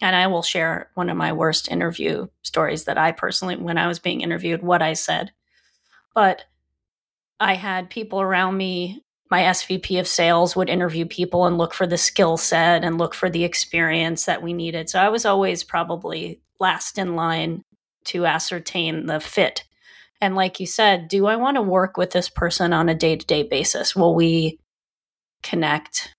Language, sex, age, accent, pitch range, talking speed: English, female, 30-49, American, 165-195 Hz, 180 wpm